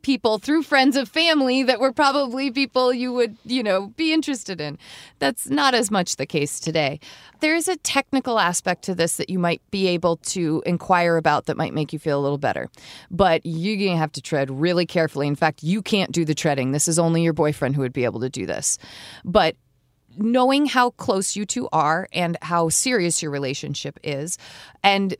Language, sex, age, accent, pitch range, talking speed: English, female, 30-49, American, 165-225 Hz, 205 wpm